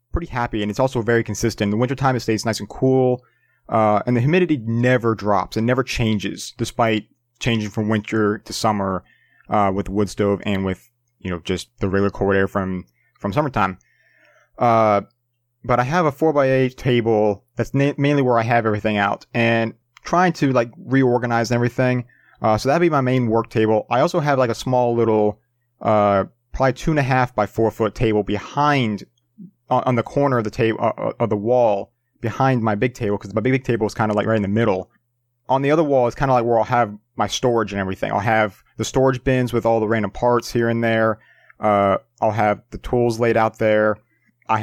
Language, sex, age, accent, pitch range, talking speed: English, male, 30-49, American, 105-125 Hz, 210 wpm